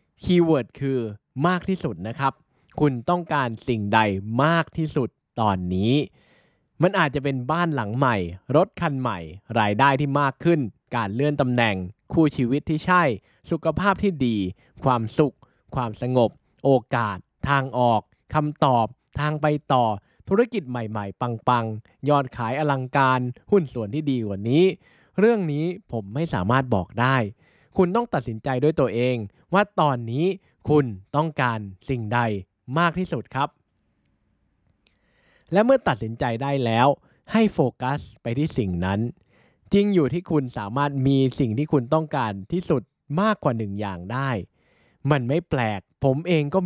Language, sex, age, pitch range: Thai, male, 20-39, 115-160 Hz